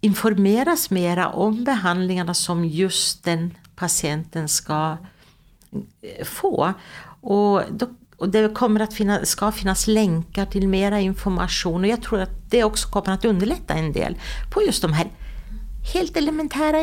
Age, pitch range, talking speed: 60-79, 170-215 Hz, 145 wpm